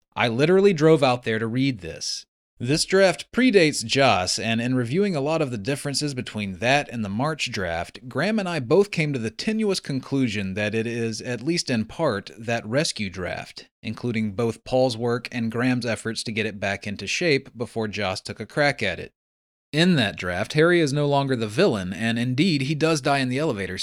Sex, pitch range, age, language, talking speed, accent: male, 105-145 Hz, 30-49, English, 205 wpm, American